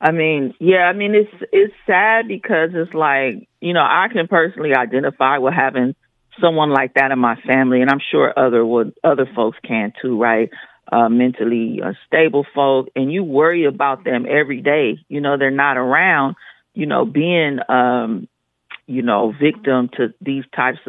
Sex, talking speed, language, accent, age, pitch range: female, 175 wpm, English, American, 40-59, 130-170 Hz